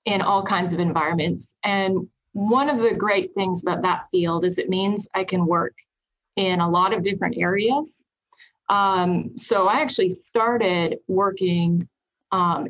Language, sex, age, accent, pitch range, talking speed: English, female, 30-49, American, 180-235 Hz, 155 wpm